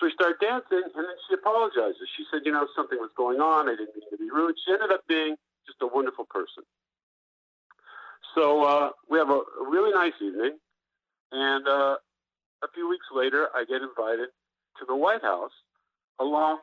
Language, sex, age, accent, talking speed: English, male, 50-69, American, 190 wpm